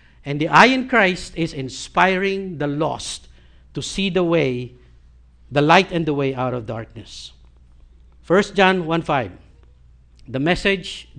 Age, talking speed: 60-79, 130 wpm